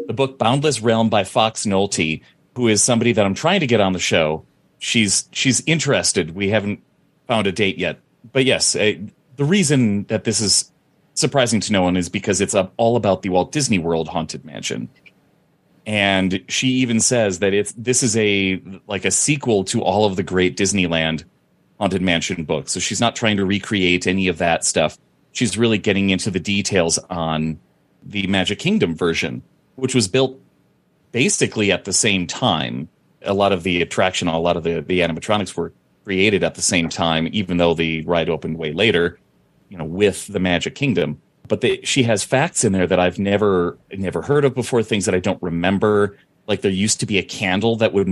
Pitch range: 90-115 Hz